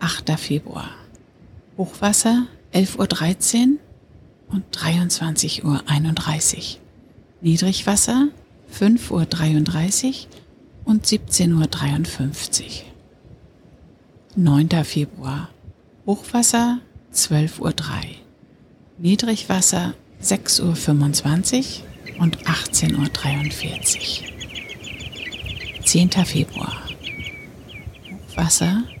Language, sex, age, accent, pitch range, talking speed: German, female, 60-79, German, 155-200 Hz, 60 wpm